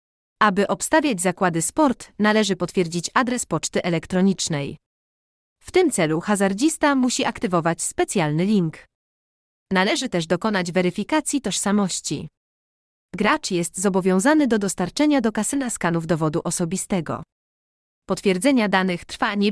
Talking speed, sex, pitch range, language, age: 110 wpm, female, 170-250 Hz, Polish, 30-49